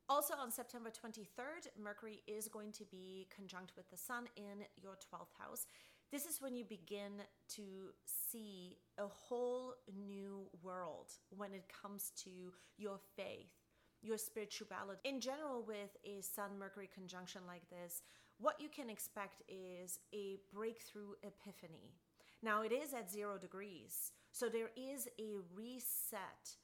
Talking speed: 140 wpm